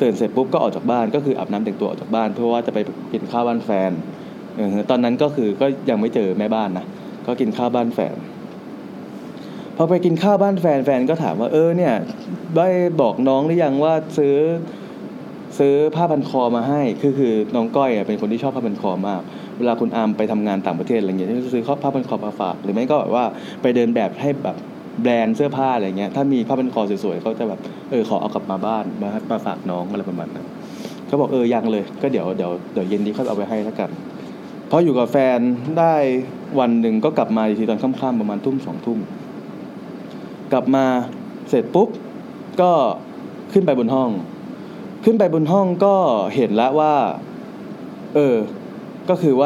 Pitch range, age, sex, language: 115-160 Hz, 20-39, male, English